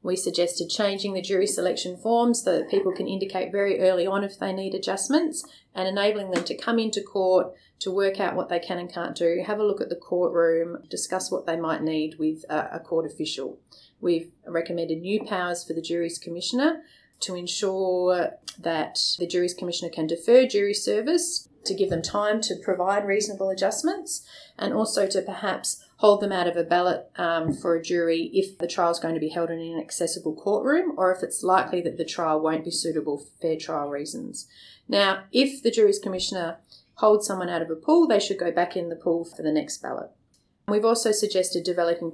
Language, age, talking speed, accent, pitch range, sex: English, 30-49, 200 wpm, Australian, 170-200 Hz, female